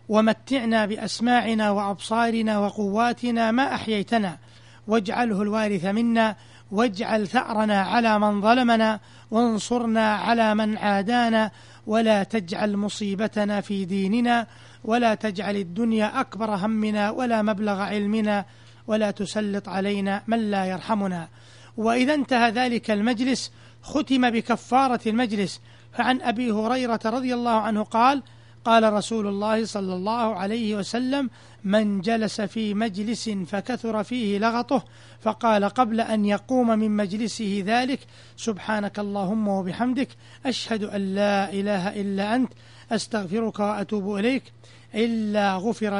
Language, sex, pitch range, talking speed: Arabic, male, 200-230 Hz, 110 wpm